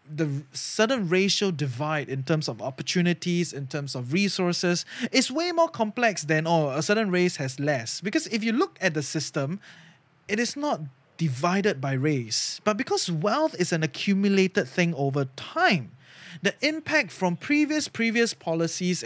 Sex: male